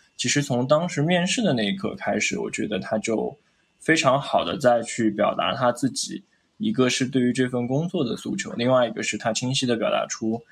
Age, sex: 10-29, male